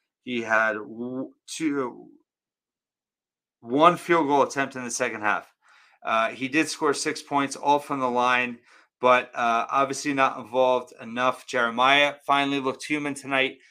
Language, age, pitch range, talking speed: English, 30-49, 130-150 Hz, 140 wpm